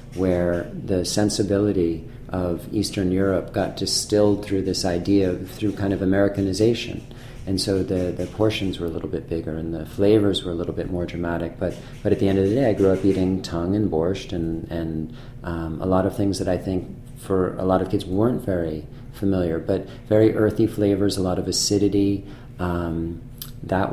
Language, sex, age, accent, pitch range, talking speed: English, male, 40-59, American, 90-110 Hz, 195 wpm